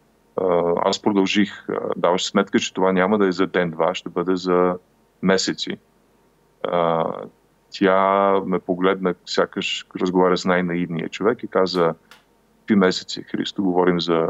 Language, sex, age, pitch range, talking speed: Bulgarian, male, 30-49, 85-95 Hz, 125 wpm